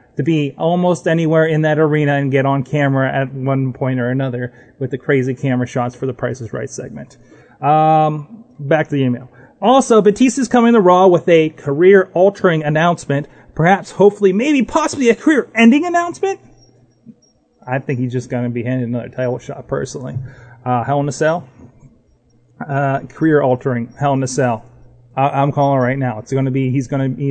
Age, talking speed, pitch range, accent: 30-49, 185 wpm, 125-160 Hz, American